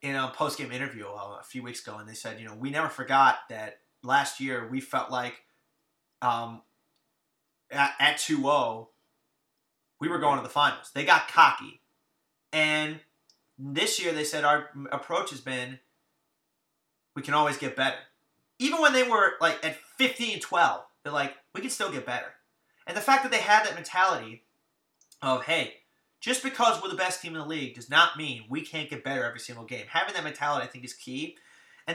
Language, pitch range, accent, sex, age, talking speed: English, 130-165 Hz, American, male, 30-49, 190 wpm